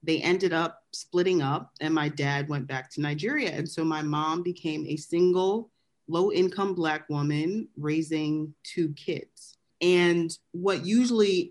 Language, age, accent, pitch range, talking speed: English, 30-49, American, 140-180 Hz, 150 wpm